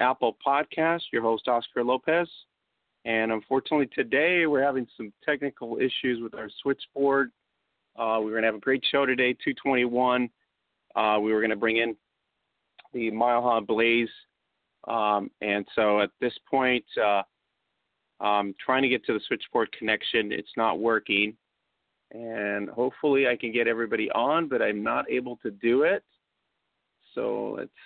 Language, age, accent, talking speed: English, 40-59, American, 155 wpm